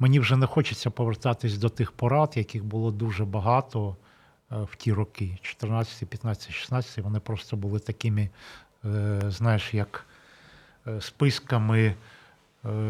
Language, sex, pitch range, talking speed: Ukrainian, male, 105-120 Hz, 125 wpm